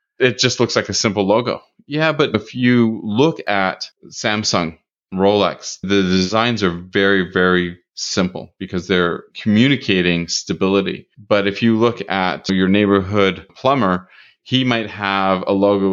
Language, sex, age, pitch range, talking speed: English, male, 30-49, 95-120 Hz, 145 wpm